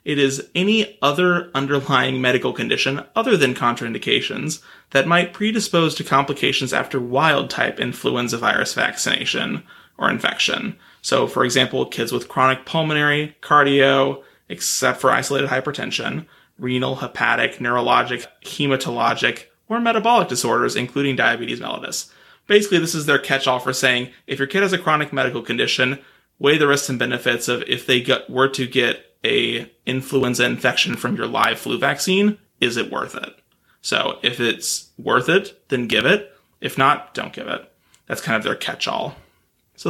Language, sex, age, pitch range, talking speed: English, male, 30-49, 125-165 Hz, 150 wpm